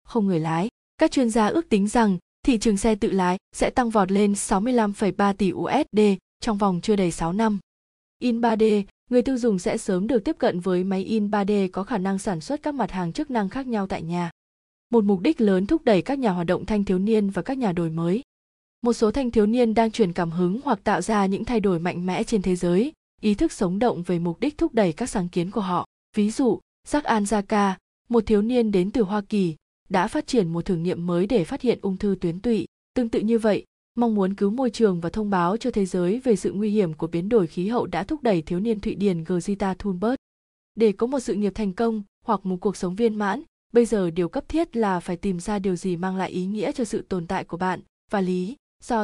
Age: 20-39